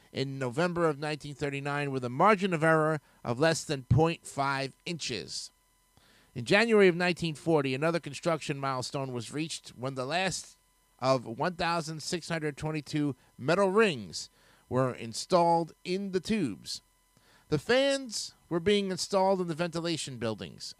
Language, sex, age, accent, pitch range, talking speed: English, male, 50-69, American, 140-180 Hz, 125 wpm